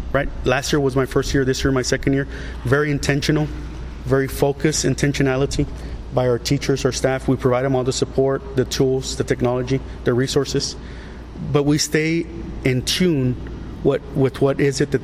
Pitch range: 125-155 Hz